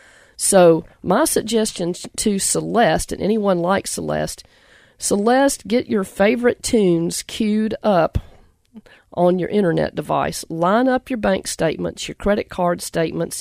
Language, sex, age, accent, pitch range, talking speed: English, female, 40-59, American, 175-225 Hz, 130 wpm